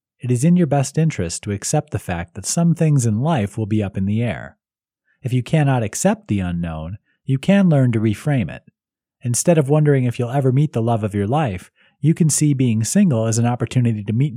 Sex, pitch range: male, 105-150 Hz